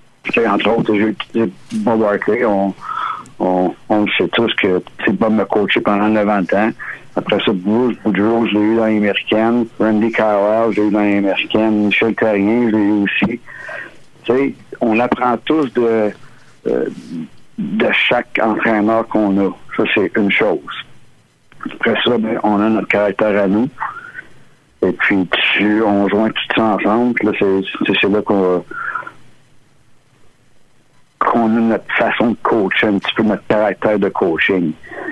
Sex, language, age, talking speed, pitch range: male, French, 60-79, 160 wpm, 100-115 Hz